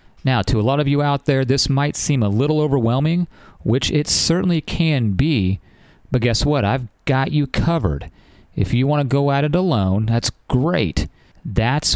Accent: American